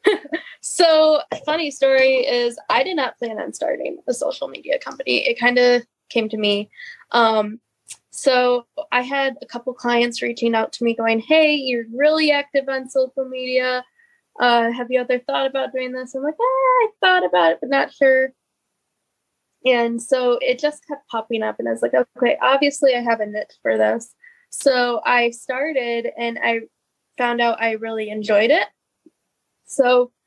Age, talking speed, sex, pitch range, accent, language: 10-29, 175 wpm, female, 225-270 Hz, American, English